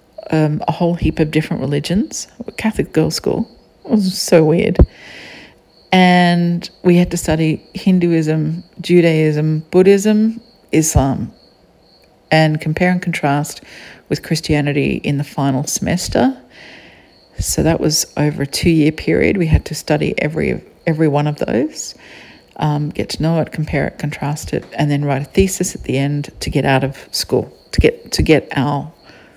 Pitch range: 150-180 Hz